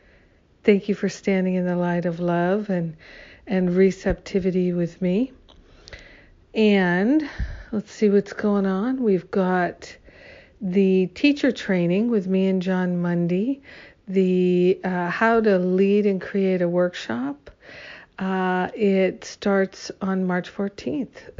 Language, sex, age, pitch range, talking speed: English, female, 60-79, 175-200 Hz, 125 wpm